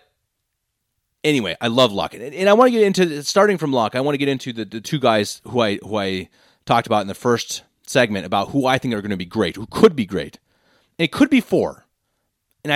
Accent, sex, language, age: American, male, English, 30-49